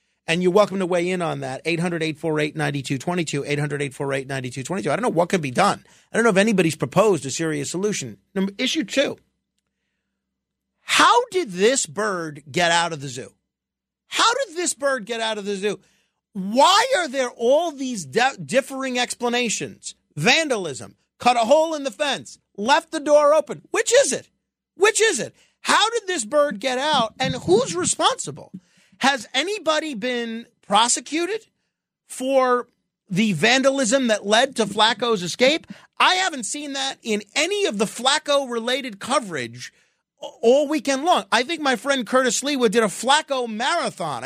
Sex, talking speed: male, 155 wpm